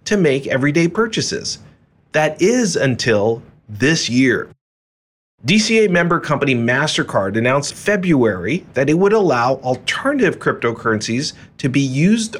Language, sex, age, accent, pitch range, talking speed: English, male, 30-49, American, 130-180 Hz, 115 wpm